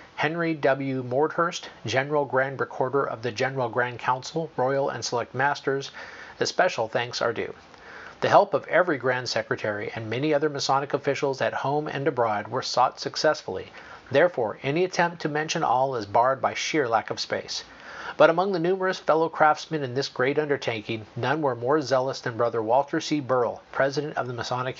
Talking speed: 180 wpm